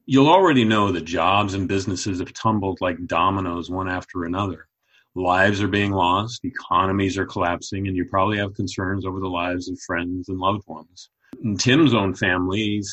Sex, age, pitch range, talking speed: male, 40-59, 95-120 Hz, 175 wpm